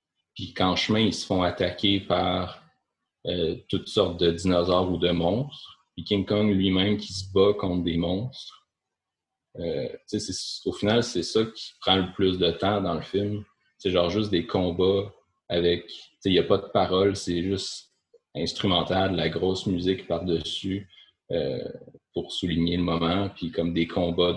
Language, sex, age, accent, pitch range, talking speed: French, male, 30-49, Canadian, 85-105 Hz, 170 wpm